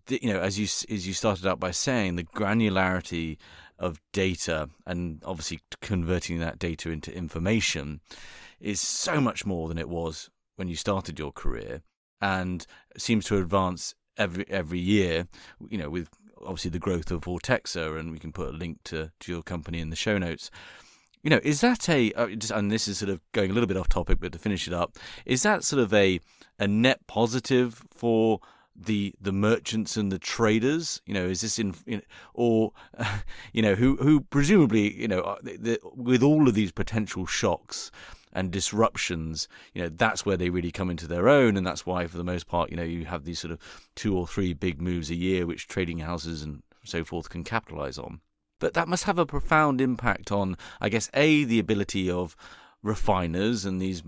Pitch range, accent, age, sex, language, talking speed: 85-110 Hz, British, 30-49, male, English, 200 wpm